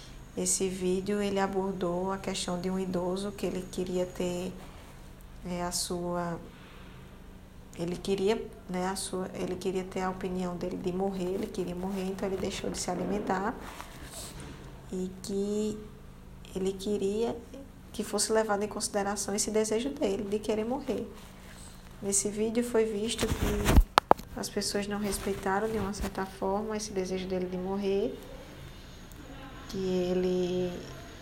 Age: 10-29